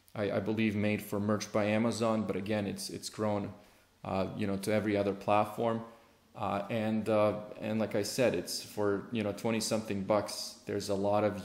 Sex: male